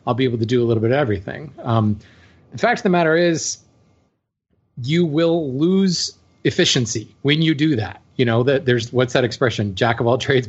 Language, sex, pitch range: English, male, 115-150 Hz